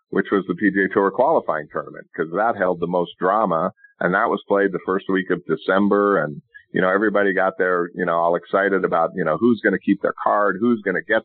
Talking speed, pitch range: 240 wpm, 95-115 Hz